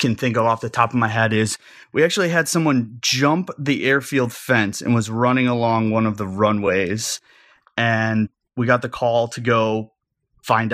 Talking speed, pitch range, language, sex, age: 190 wpm, 110-125 Hz, English, male, 30-49